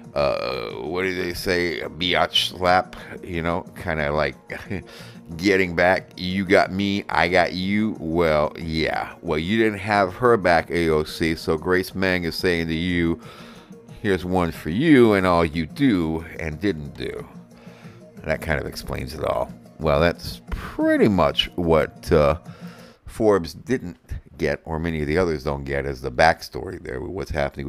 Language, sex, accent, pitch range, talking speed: English, male, American, 75-95 Hz, 165 wpm